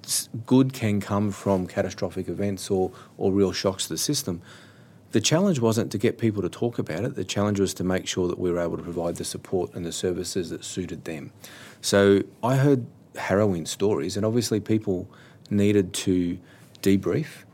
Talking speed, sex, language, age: 185 wpm, male, English, 30-49